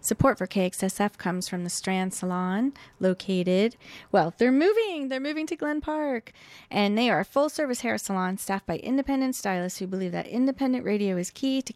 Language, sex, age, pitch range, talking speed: English, female, 30-49, 185-230 Hz, 185 wpm